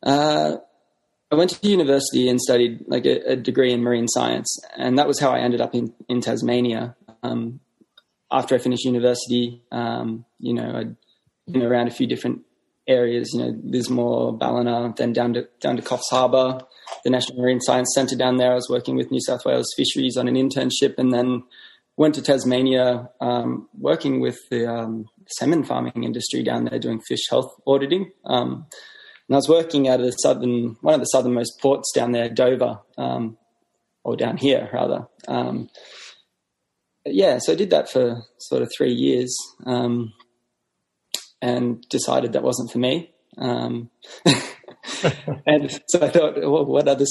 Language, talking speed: English, 170 wpm